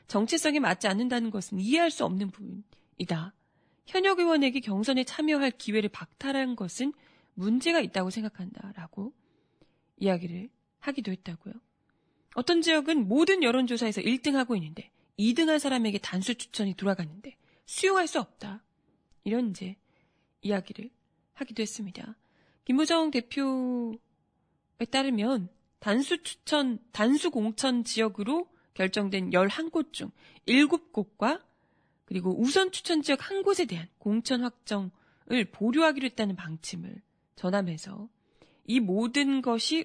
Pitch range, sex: 200-270 Hz, female